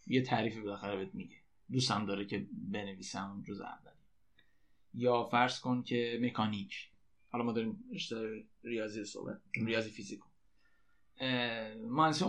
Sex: male